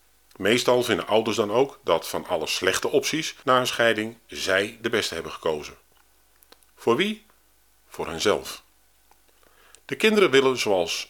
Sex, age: male, 50-69